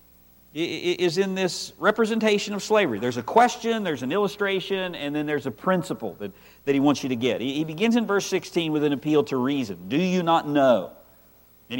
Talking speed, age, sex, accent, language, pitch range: 200 wpm, 50-69, male, American, English, 125-190 Hz